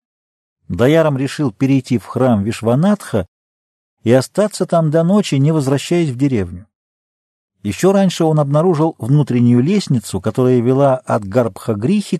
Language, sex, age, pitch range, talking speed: Russian, male, 50-69, 105-150 Hz, 130 wpm